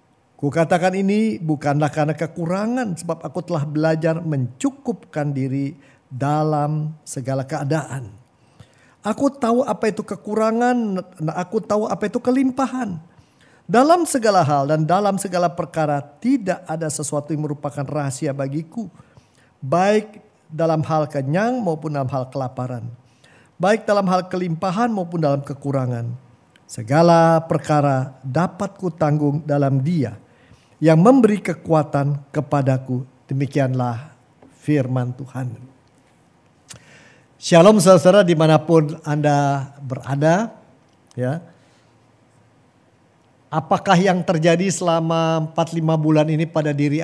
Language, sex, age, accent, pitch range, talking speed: Indonesian, male, 50-69, native, 140-180 Hz, 105 wpm